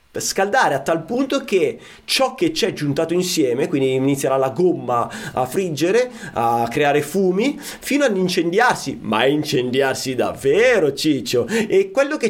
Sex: male